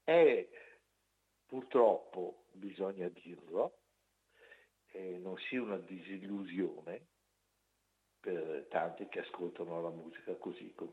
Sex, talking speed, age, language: male, 95 wpm, 60-79, Italian